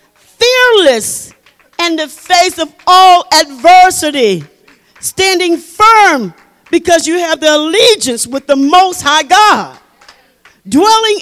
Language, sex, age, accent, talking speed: English, female, 50-69, American, 105 wpm